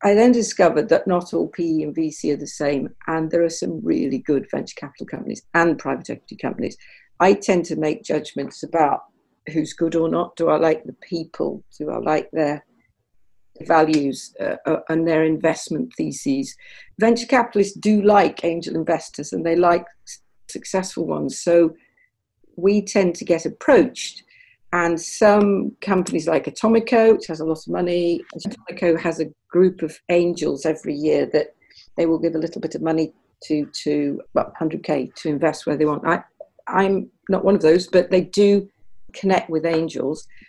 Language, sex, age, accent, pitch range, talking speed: English, female, 50-69, British, 155-195 Hz, 170 wpm